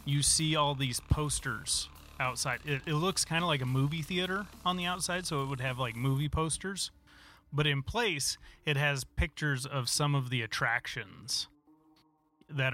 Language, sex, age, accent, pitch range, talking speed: English, male, 30-49, American, 125-150 Hz, 175 wpm